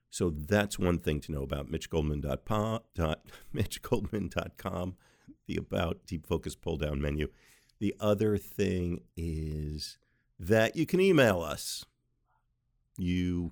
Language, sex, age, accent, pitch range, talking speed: English, male, 50-69, American, 75-105 Hz, 105 wpm